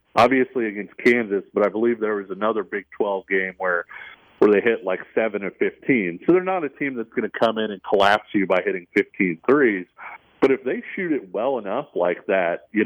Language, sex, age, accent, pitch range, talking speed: English, male, 40-59, American, 100-115 Hz, 215 wpm